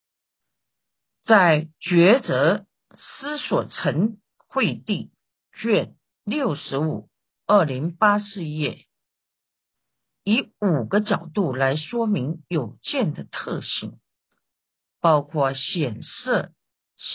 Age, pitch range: 50-69, 150-210 Hz